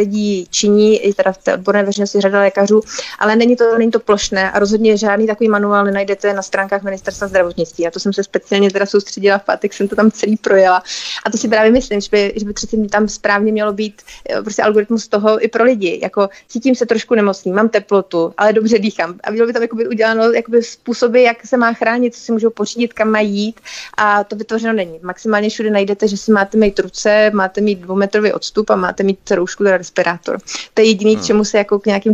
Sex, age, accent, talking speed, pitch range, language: female, 30-49, native, 225 wpm, 190-215 Hz, Czech